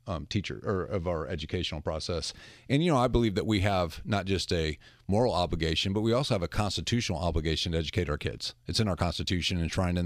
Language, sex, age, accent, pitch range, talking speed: English, male, 40-59, American, 90-115 Hz, 220 wpm